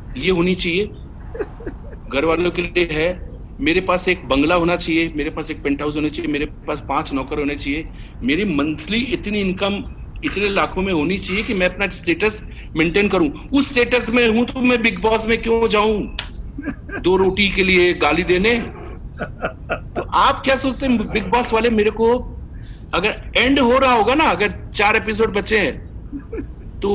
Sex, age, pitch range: male, 50-69, 175-235 Hz